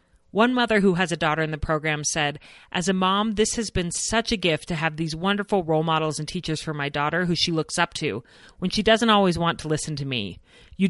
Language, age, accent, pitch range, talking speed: English, 30-49, American, 150-195 Hz, 250 wpm